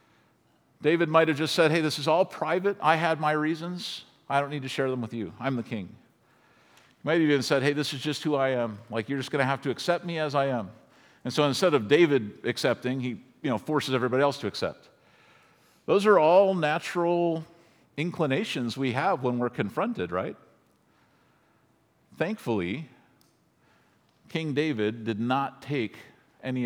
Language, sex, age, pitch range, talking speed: English, male, 50-69, 125-160 Hz, 180 wpm